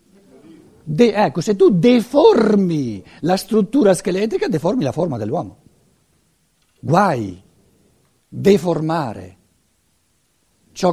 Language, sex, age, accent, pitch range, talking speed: Italian, male, 60-79, native, 145-215 Hz, 75 wpm